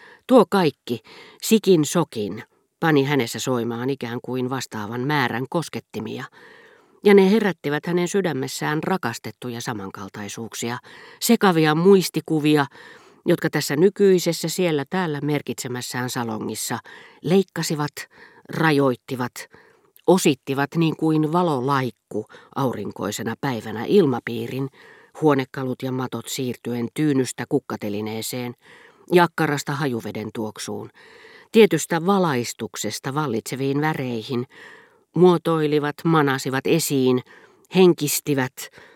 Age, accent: 40-59, native